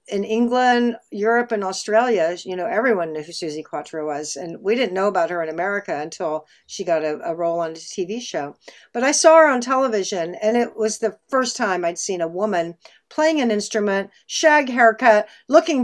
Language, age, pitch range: English, 60-79, 190-245 Hz